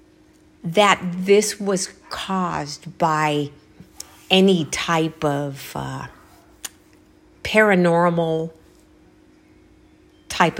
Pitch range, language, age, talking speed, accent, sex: 170-205 Hz, English, 50-69, 60 wpm, American, female